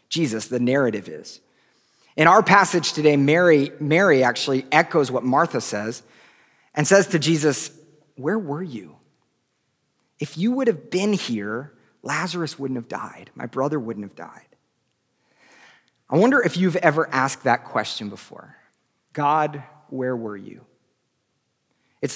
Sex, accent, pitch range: male, American, 130-175 Hz